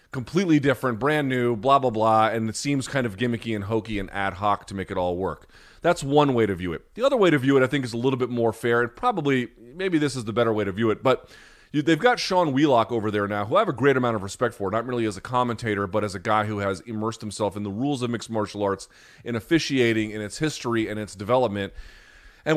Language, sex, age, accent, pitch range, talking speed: English, male, 30-49, American, 115-145 Hz, 265 wpm